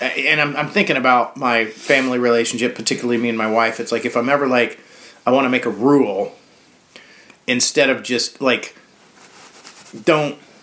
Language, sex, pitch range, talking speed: English, male, 120-170 Hz, 165 wpm